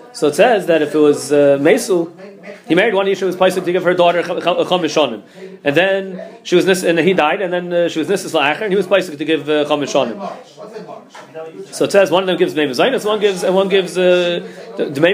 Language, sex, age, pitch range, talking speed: English, male, 30-49, 160-210 Hz, 220 wpm